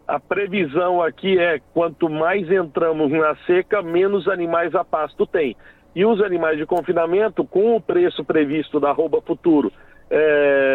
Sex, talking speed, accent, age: male, 150 wpm, Brazilian, 40-59